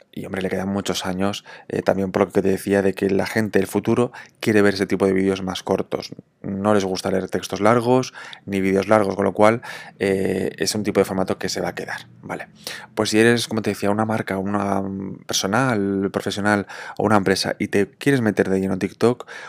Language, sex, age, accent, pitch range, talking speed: Spanish, male, 20-39, Spanish, 95-115 Hz, 220 wpm